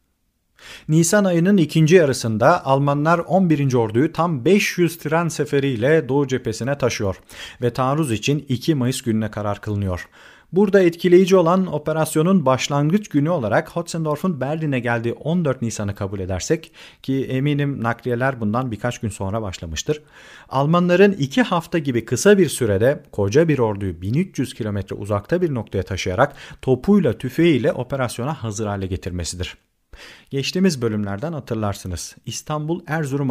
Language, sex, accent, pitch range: Turkish, male, native, 105-155 Hz